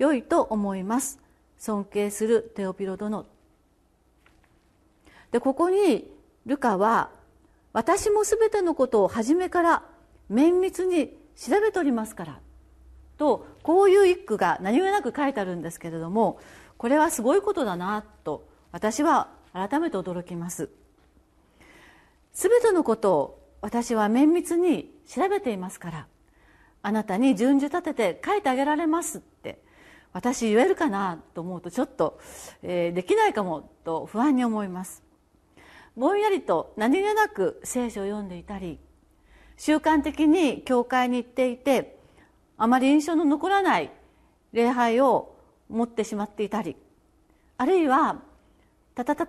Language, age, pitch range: Japanese, 40-59, 210-320 Hz